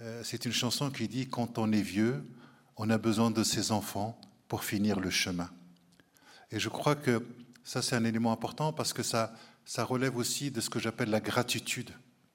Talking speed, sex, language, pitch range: 195 wpm, male, French, 105-120 Hz